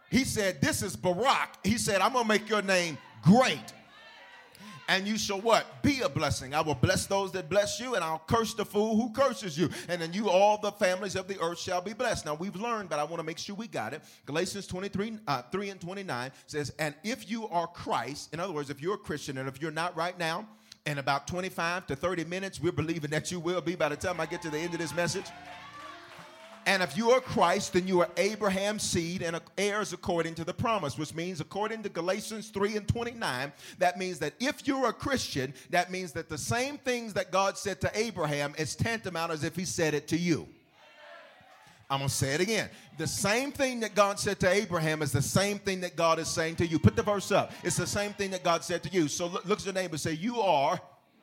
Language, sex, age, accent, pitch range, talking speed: English, male, 40-59, American, 160-205 Hz, 240 wpm